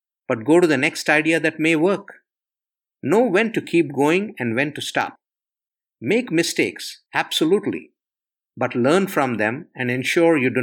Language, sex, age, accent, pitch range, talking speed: English, male, 50-69, Indian, 125-175 Hz, 165 wpm